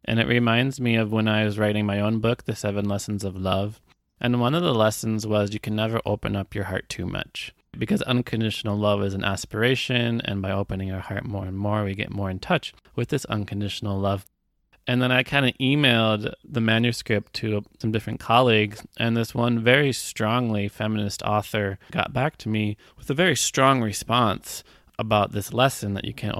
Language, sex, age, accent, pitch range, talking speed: English, male, 20-39, American, 100-120 Hz, 200 wpm